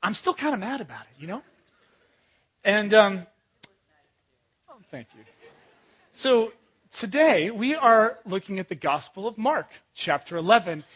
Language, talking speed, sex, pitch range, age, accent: English, 140 wpm, male, 180-235 Hz, 30-49, American